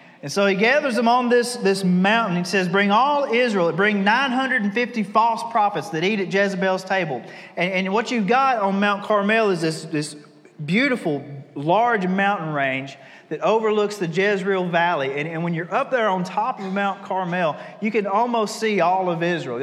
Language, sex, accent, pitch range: English, male, American, 165-210 Hz